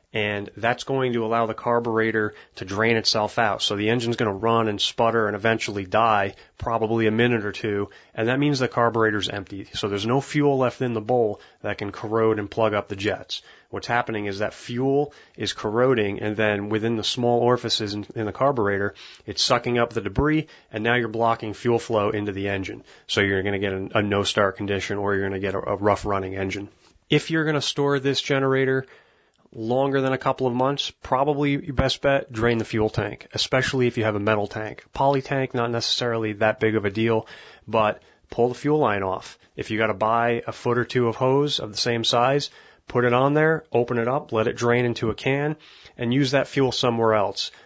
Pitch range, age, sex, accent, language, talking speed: 110-130 Hz, 30-49, male, American, English, 220 wpm